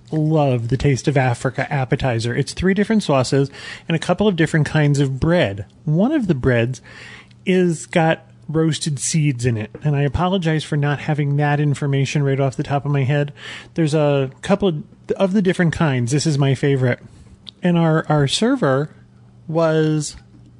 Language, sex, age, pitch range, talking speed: English, male, 30-49, 135-180 Hz, 180 wpm